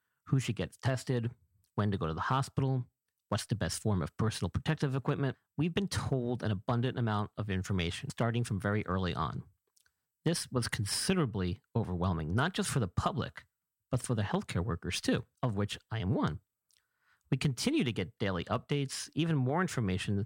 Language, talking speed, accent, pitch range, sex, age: English, 180 wpm, American, 100-130 Hz, male, 50-69